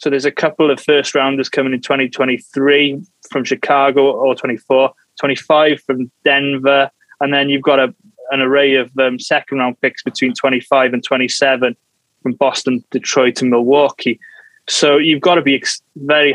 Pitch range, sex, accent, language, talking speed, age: 130-145 Hz, male, British, English, 160 wpm, 20-39